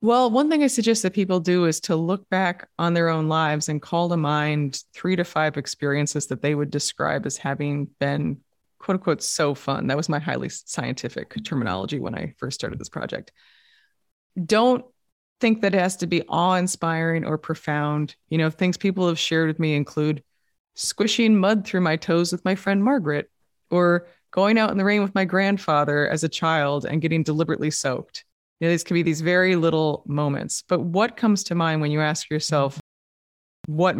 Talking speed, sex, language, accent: 195 wpm, female, English, American